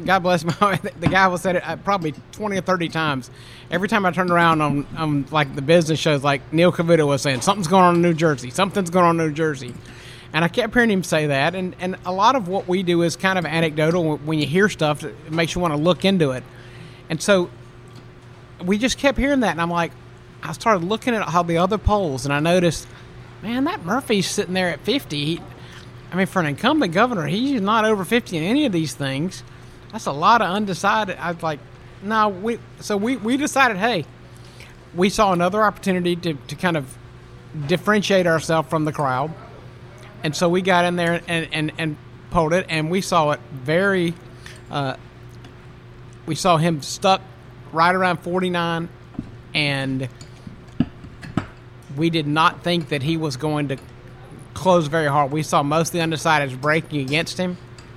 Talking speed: 195 wpm